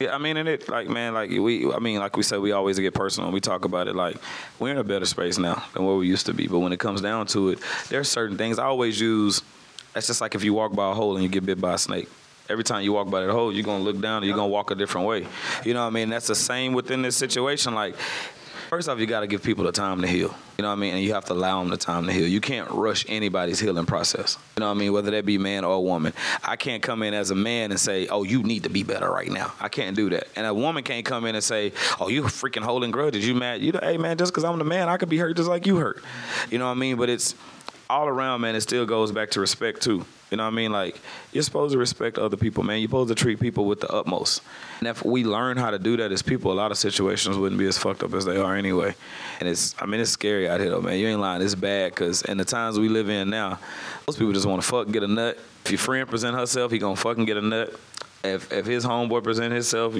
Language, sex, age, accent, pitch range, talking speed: English, male, 30-49, American, 100-120 Hz, 300 wpm